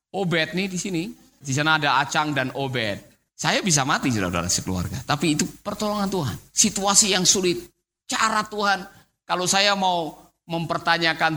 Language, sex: Indonesian, male